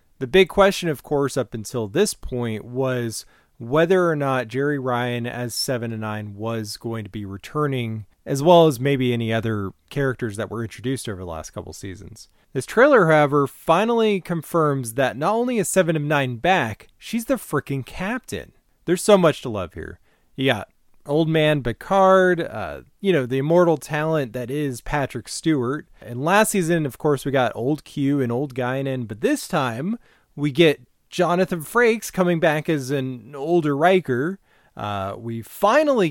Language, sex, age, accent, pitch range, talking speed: English, male, 30-49, American, 120-175 Hz, 170 wpm